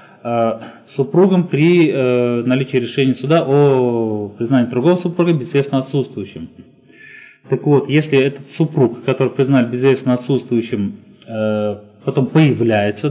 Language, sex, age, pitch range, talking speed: Russian, male, 20-39, 115-145 Hz, 110 wpm